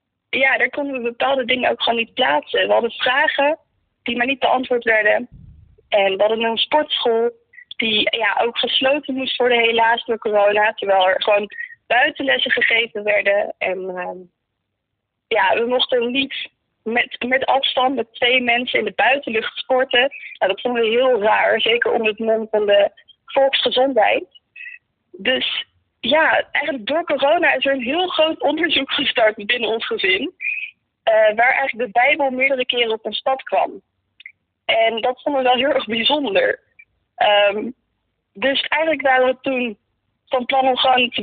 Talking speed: 160 wpm